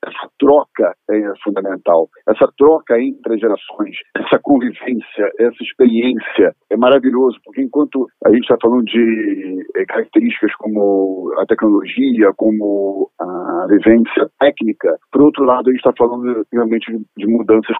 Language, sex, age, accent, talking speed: Portuguese, male, 50-69, Brazilian, 130 wpm